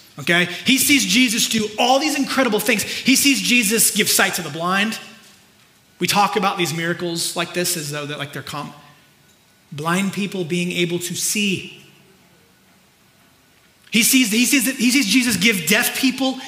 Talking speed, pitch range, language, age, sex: 170 wpm, 170-235 Hz, English, 30-49, male